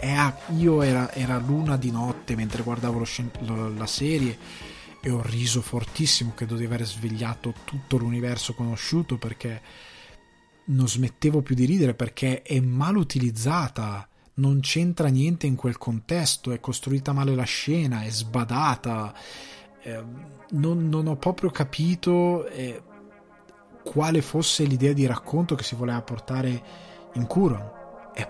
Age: 20-39